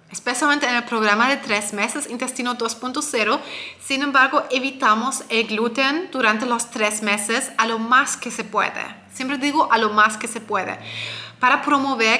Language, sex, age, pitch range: Spanish, female, 20-39, 220-265 Hz